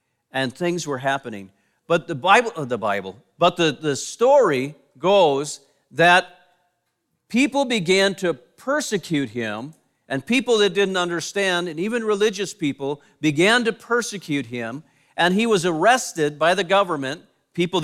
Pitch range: 155-210 Hz